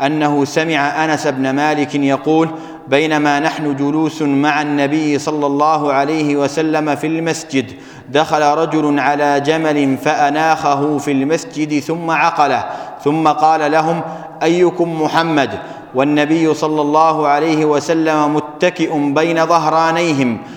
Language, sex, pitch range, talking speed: Arabic, male, 145-160 Hz, 115 wpm